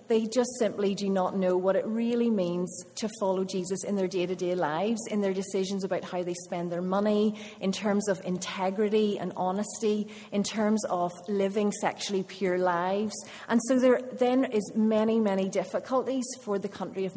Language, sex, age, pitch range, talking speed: English, female, 30-49, 190-225 Hz, 180 wpm